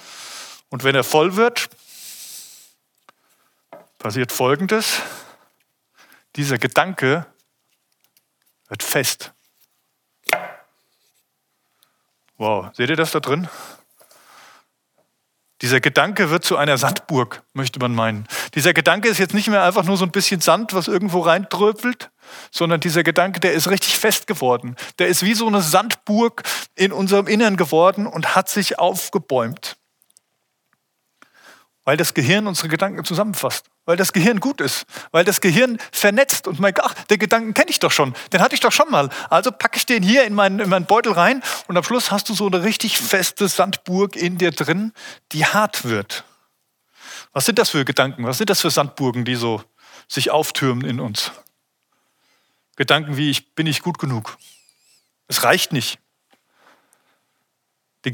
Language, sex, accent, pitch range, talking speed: German, male, German, 155-210 Hz, 150 wpm